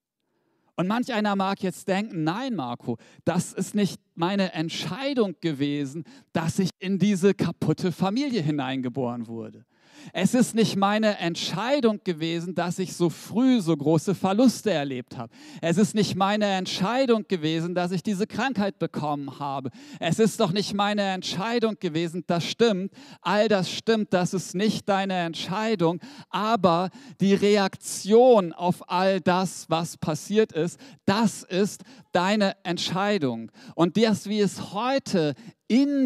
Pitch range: 165-210 Hz